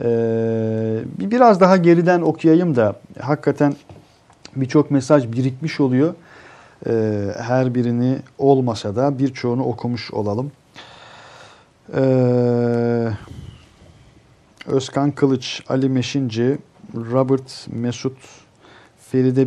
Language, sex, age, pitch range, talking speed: Turkish, male, 50-69, 115-140 Hz, 85 wpm